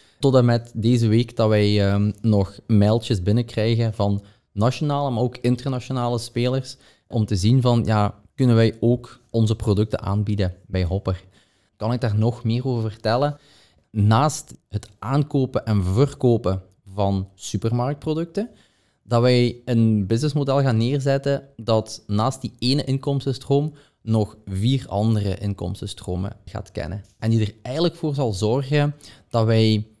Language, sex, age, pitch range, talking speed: Dutch, male, 20-39, 105-125 Hz, 140 wpm